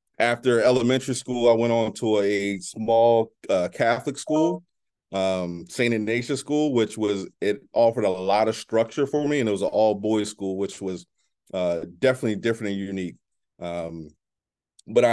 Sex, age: male, 30-49